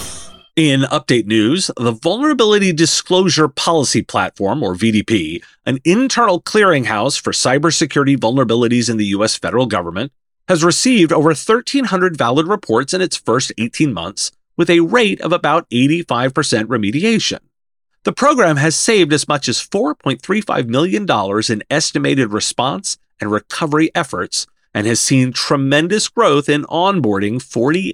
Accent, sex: American, male